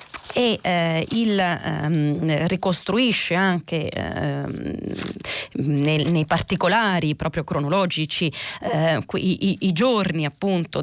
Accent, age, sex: native, 30-49, female